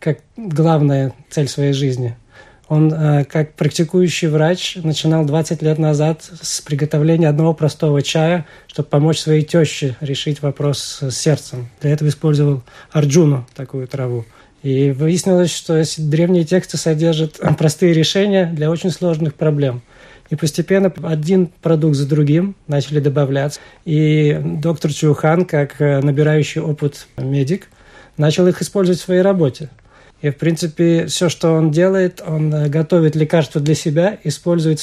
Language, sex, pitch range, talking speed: Russian, male, 150-170 Hz, 140 wpm